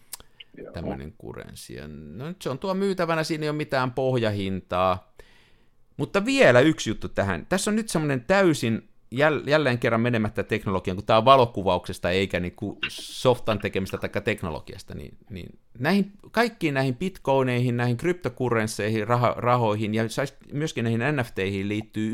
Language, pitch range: Finnish, 105-150 Hz